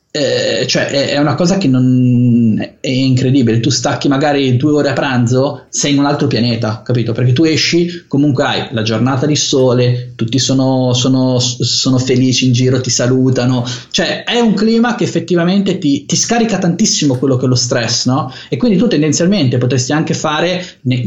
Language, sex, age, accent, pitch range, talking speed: Italian, male, 20-39, native, 125-155 Hz, 180 wpm